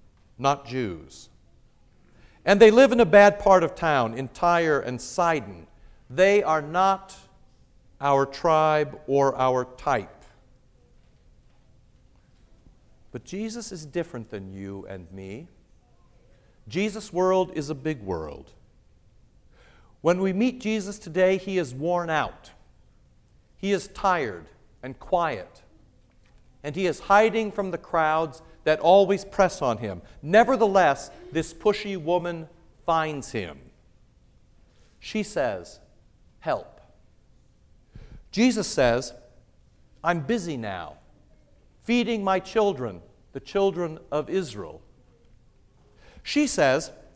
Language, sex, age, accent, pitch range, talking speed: English, male, 50-69, American, 120-200 Hz, 110 wpm